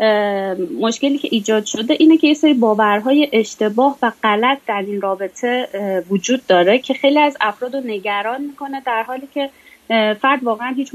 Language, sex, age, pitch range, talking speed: Persian, female, 30-49, 210-290 Hz, 155 wpm